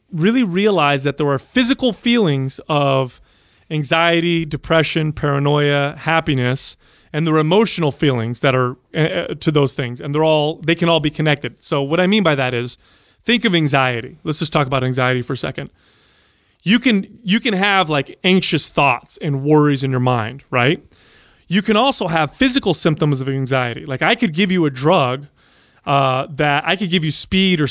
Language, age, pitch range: English, 30-49, 135-175 Hz